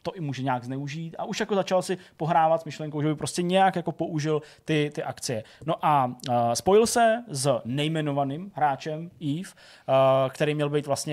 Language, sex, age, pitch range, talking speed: Czech, male, 20-39, 140-170 Hz, 180 wpm